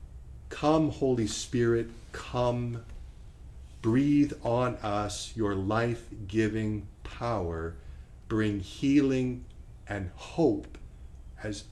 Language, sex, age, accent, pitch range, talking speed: English, male, 50-69, American, 100-140 Hz, 75 wpm